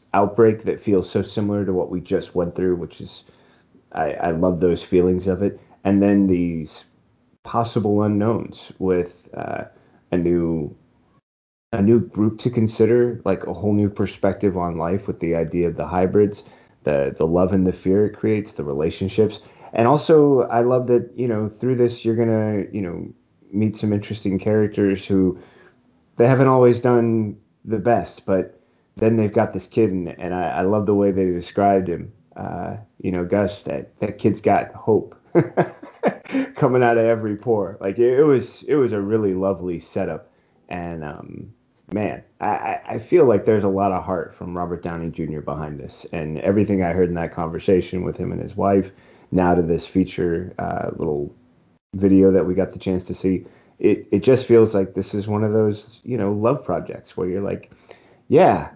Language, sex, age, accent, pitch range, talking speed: English, male, 30-49, American, 90-110 Hz, 190 wpm